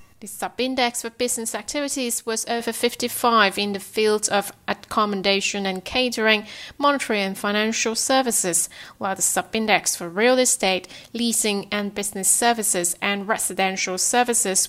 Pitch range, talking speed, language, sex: 195-240 Hz, 130 wpm, English, female